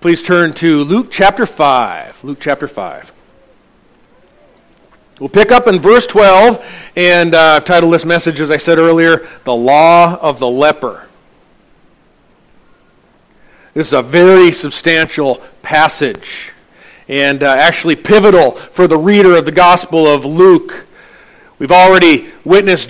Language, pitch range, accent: English, 165-205 Hz, American